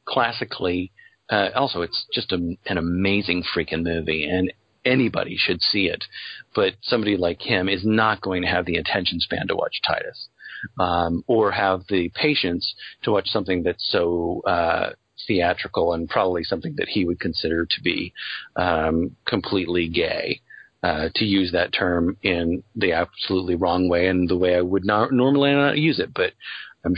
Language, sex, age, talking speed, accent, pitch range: English, male, 40-59, 165 wpm, American, 90-110 Hz